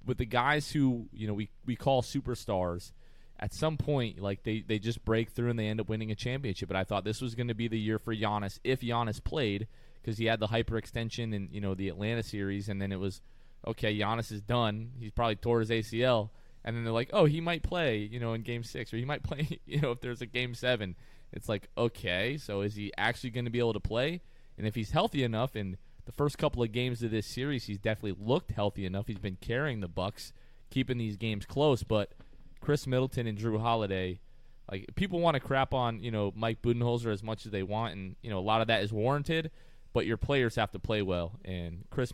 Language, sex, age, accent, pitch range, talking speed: English, male, 20-39, American, 105-125 Hz, 240 wpm